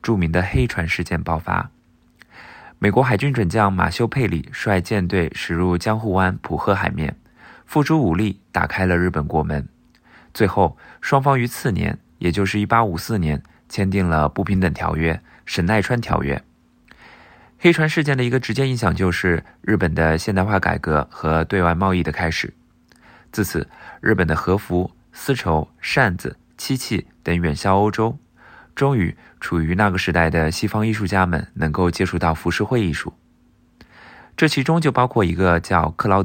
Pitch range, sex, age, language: 80-110 Hz, male, 20-39, Chinese